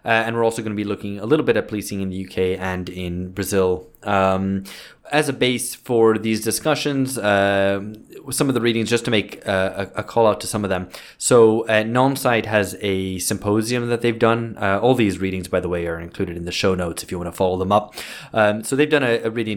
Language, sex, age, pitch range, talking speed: English, male, 20-39, 95-115 Hz, 240 wpm